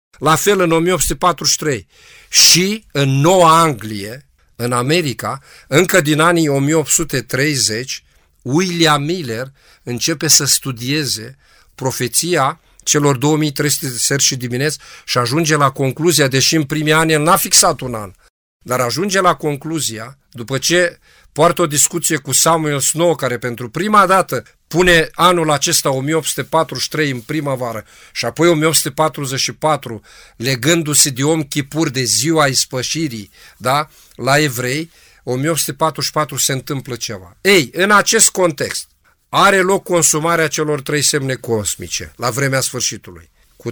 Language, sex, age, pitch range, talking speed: Romanian, male, 50-69, 125-160 Hz, 125 wpm